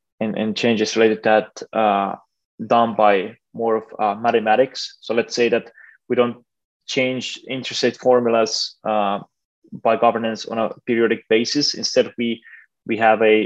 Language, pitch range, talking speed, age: English, 110-120 Hz, 155 wpm, 20-39